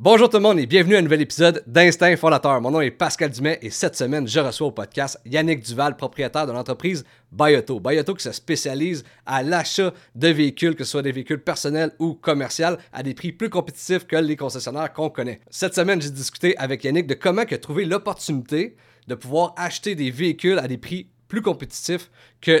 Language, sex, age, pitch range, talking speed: French, male, 40-59, 135-170 Hz, 205 wpm